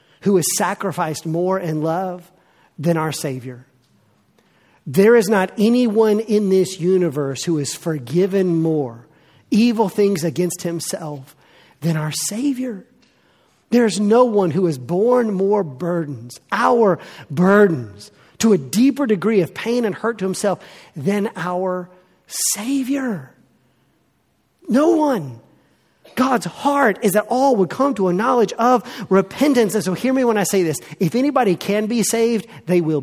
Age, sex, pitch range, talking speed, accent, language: 40-59, male, 170-255 Hz, 145 wpm, American, English